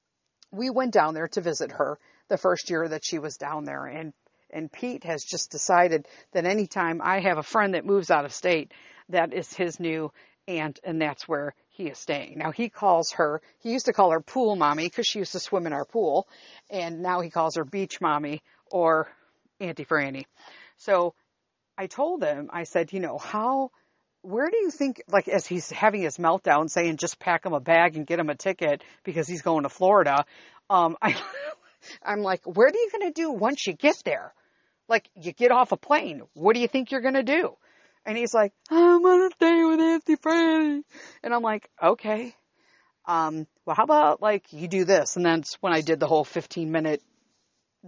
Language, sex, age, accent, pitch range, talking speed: English, female, 60-79, American, 160-240 Hz, 210 wpm